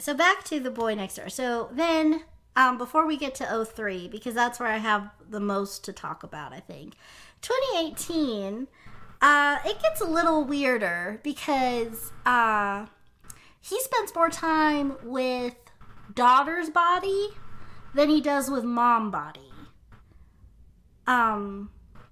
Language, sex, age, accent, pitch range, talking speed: English, female, 30-49, American, 205-285 Hz, 135 wpm